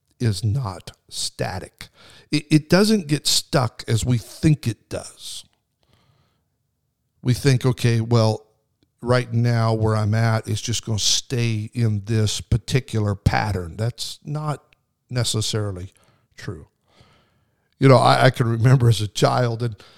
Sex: male